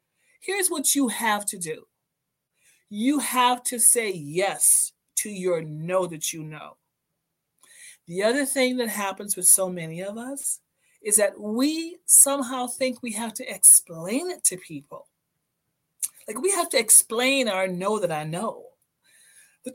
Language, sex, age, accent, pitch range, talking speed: English, female, 40-59, American, 180-260 Hz, 150 wpm